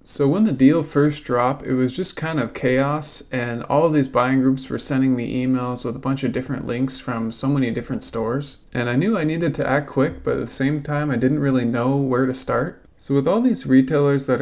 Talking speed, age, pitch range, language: 240 wpm, 20-39, 125-145 Hz, English